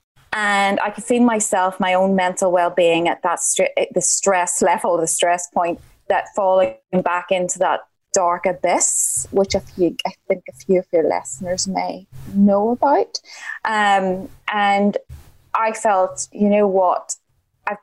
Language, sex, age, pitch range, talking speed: English, female, 20-39, 185-220 Hz, 160 wpm